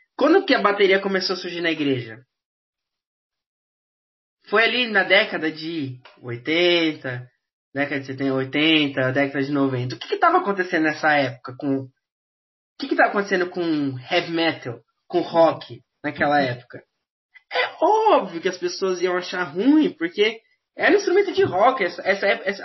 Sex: male